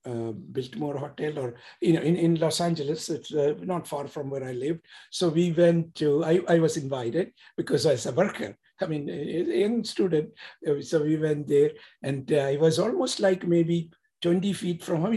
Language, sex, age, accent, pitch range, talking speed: English, male, 60-79, Indian, 140-175 Hz, 205 wpm